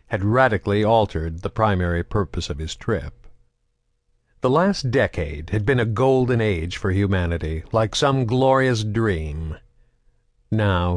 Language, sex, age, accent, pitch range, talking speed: English, male, 60-79, American, 95-120 Hz, 130 wpm